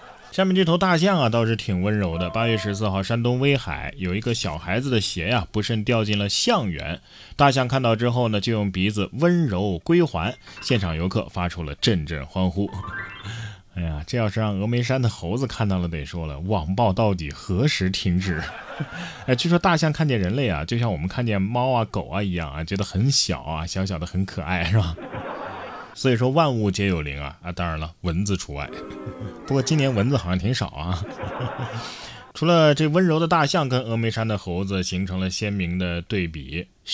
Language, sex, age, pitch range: Chinese, male, 20-39, 90-120 Hz